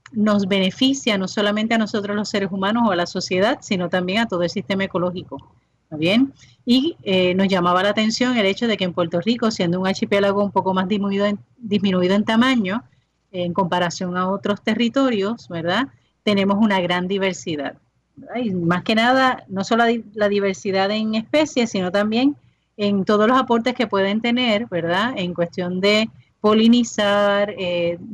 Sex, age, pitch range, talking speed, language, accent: female, 30-49, 190-230 Hz, 175 wpm, Spanish, American